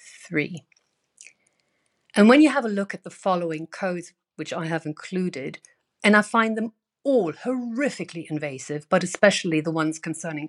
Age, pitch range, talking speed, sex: 50-69, 160-205 Hz, 150 wpm, female